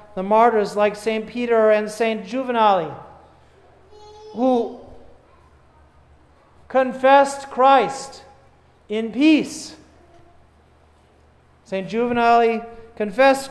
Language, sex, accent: English, male, American